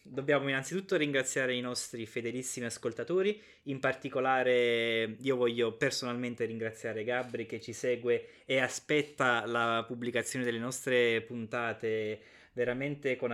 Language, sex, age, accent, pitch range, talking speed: Italian, male, 20-39, native, 115-140 Hz, 115 wpm